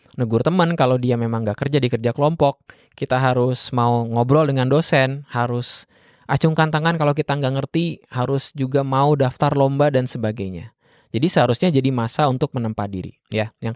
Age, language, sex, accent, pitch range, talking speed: 20-39, Indonesian, male, native, 115-145 Hz, 170 wpm